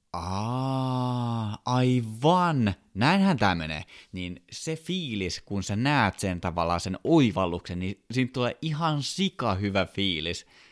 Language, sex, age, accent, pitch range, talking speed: Finnish, male, 20-39, native, 85-110 Hz, 120 wpm